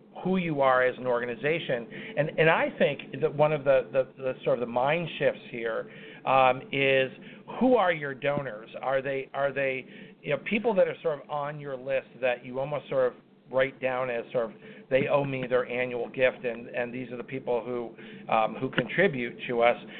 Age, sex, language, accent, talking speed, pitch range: 50-69, male, English, American, 210 wpm, 130-160 Hz